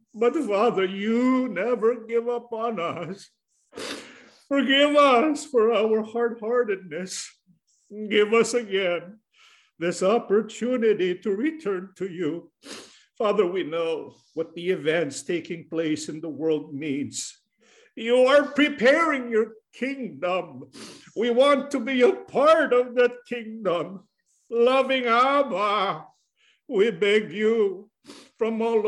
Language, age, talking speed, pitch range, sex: English, 50-69, 115 wpm, 210-270 Hz, male